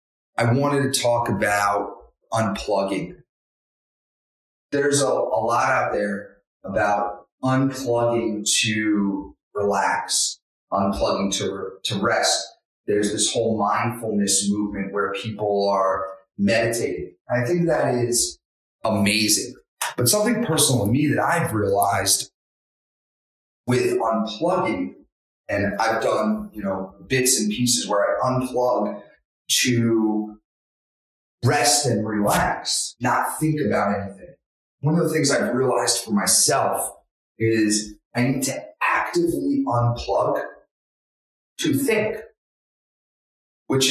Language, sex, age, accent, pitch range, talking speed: English, male, 30-49, American, 105-135 Hz, 110 wpm